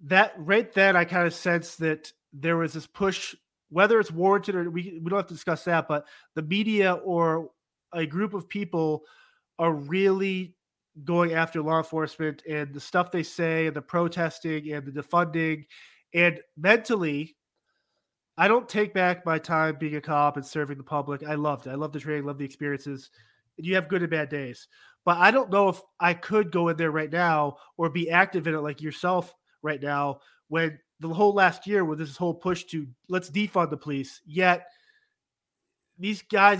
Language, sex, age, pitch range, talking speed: English, male, 30-49, 150-185 Hz, 195 wpm